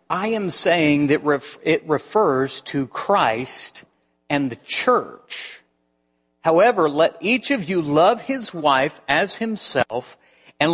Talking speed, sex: 130 wpm, male